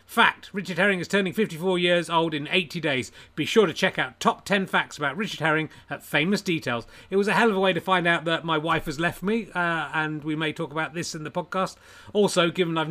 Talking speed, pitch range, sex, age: 250 wpm, 155-190 Hz, male, 30-49